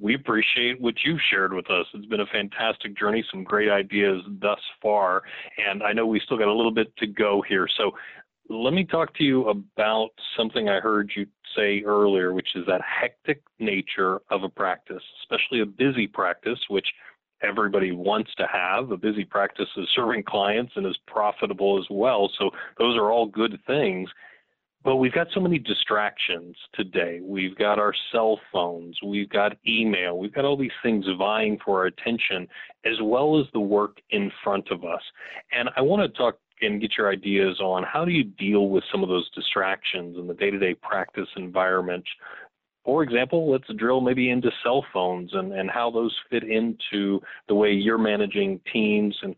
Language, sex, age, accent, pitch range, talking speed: English, male, 40-59, American, 95-115 Hz, 185 wpm